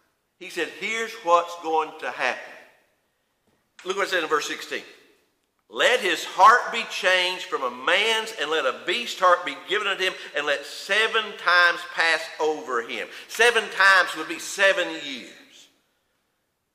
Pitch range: 160-260 Hz